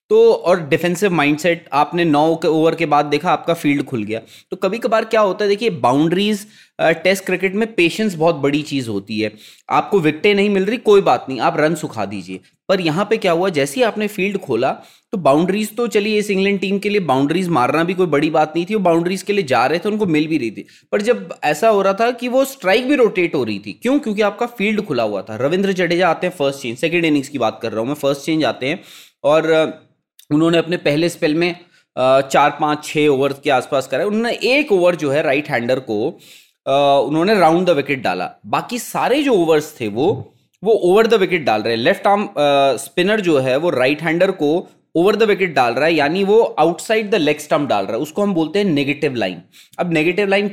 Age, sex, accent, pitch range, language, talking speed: 20-39, male, native, 145-200 Hz, Hindi, 230 wpm